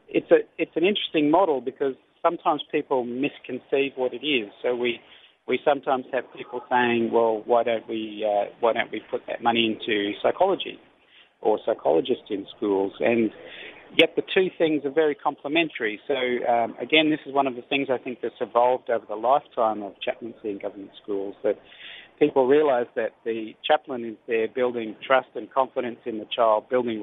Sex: male